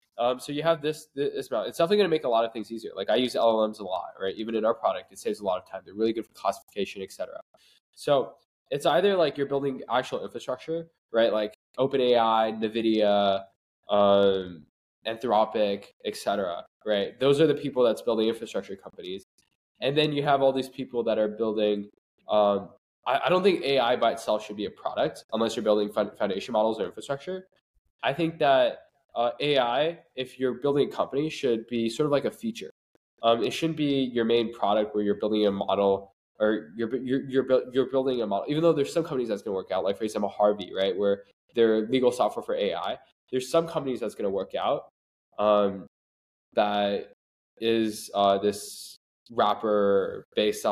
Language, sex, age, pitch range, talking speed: English, male, 10-29, 105-135 Hz, 200 wpm